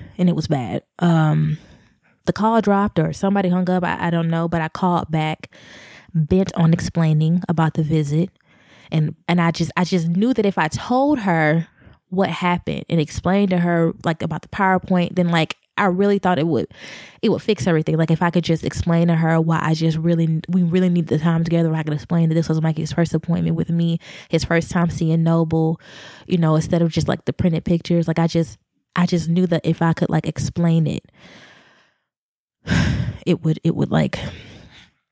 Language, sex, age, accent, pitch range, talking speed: English, female, 20-39, American, 160-185 Hz, 205 wpm